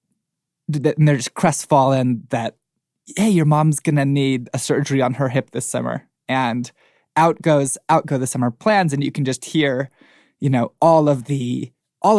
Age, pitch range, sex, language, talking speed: 20-39, 130-155 Hz, male, English, 175 wpm